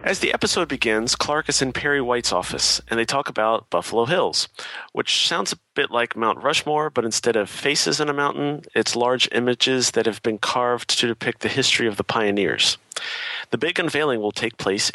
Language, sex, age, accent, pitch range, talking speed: English, male, 40-59, American, 110-135 Hz, 200 wpm